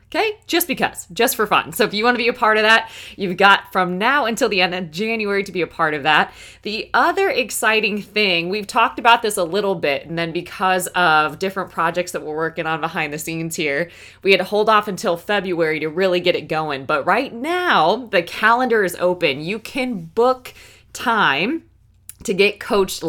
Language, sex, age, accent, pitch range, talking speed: English, female, 20-39, American, 165-215 Hz, 215 wpm